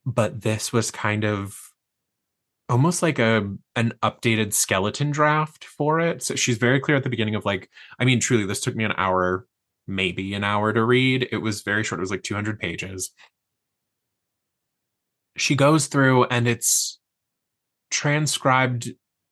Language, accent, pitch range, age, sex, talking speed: English, American, 105-130 Hz, 20-39, male, 160 wpm